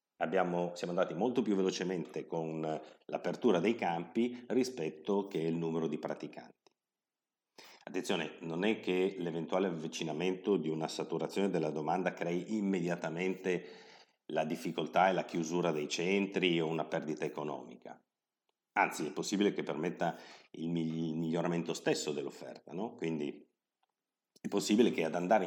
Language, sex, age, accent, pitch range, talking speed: Italian, male, 50-69, native, 80-95 Hz, 130 wpm